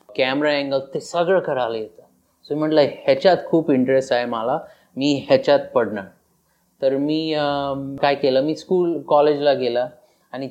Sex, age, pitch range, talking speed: male, 30-49, 135-155 Hz, 150 wpm